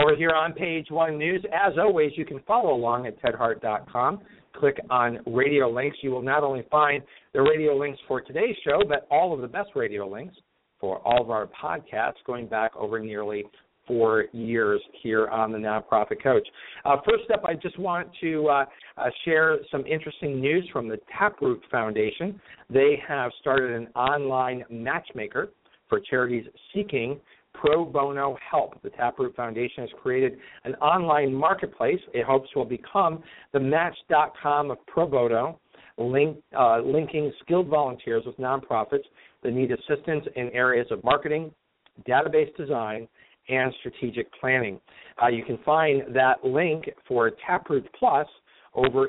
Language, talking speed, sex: English, 155 wpm, male